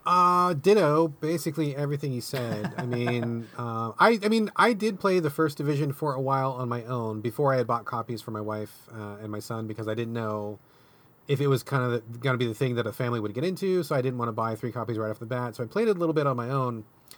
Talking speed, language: 270 wpm, English